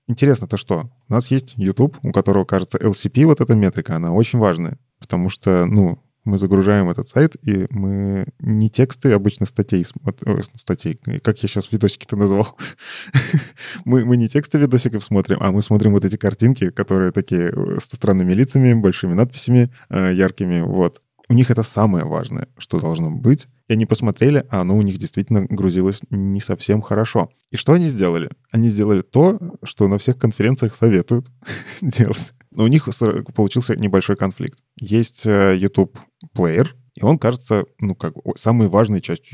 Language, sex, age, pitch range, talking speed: Russian, male, 20-39, 95-125 Hz, 165 wpm